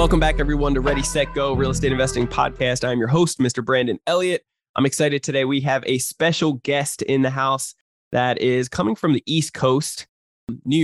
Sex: male